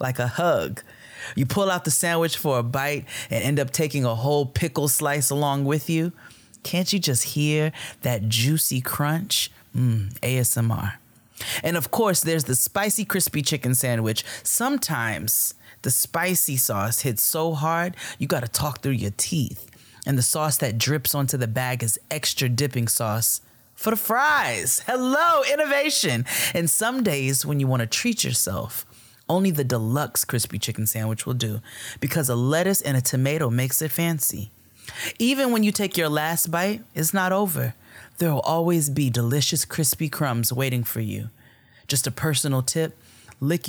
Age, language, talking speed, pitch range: 30-49, English, 165 wpm, 120-155 Hz